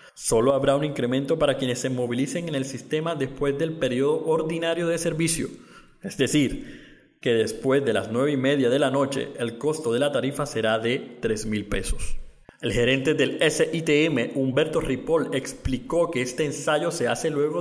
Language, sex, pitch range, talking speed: Spanish, male, 125-165 Hz, 175 wpm